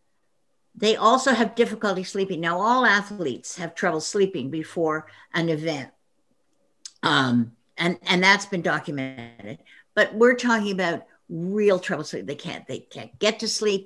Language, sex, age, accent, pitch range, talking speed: English, female, 60-79, American, 165-220 Hz, 145 wpm